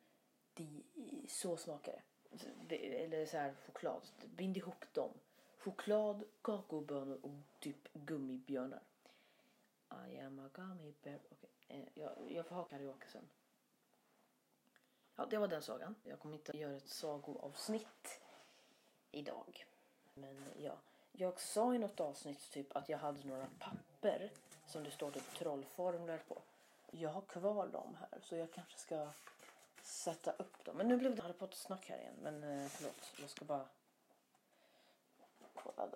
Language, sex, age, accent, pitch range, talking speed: Swedish, female, 30-49, native, 145-195 Hz, 140 wpm